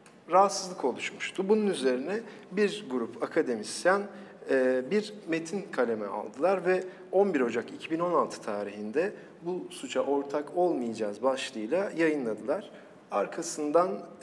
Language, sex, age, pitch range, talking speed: Turkish, male, 50-69, 135-190 Hz, 95 wpm